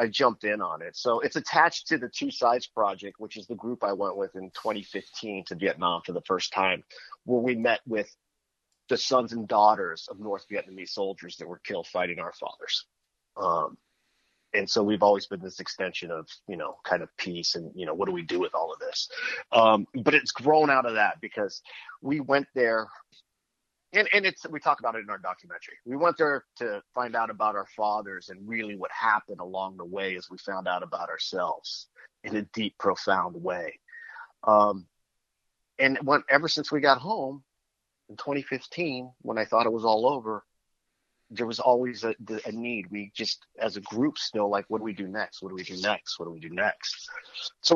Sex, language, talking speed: male, English, 205 wpm